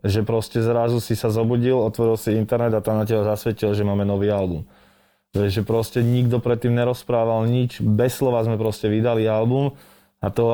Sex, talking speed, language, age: male, 180 wpm, Slovak, 20-39